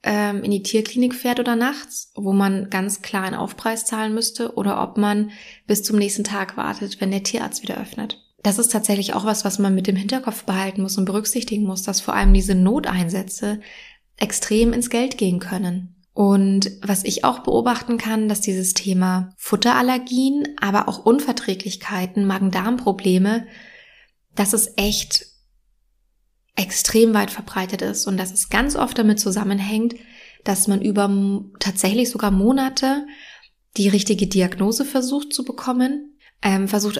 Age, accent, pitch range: 20-39, German, 195-235 Hz